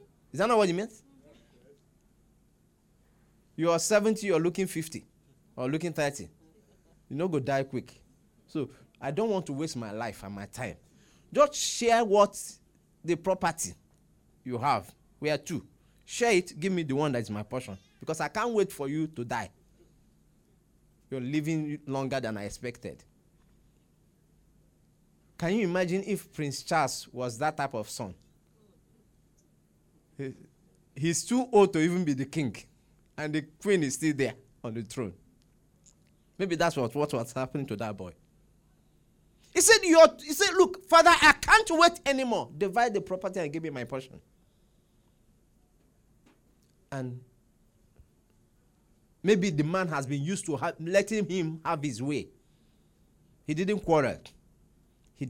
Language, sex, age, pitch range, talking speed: English, male, 30-49, 125-190 Hz, 150 wpm